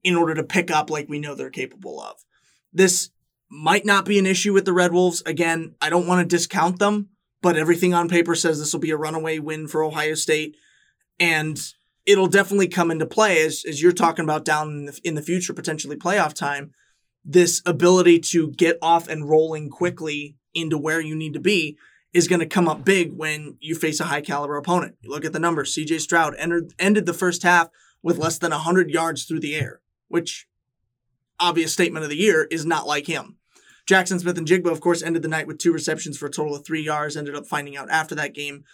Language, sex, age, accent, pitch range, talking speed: English, male, 20-39, American, 155-180 Hz, 220 wpm